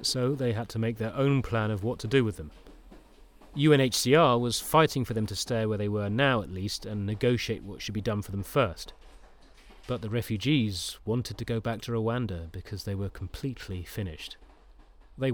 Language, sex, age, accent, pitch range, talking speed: English, male, 30-49, British, 95-120 Hz, 200 wpm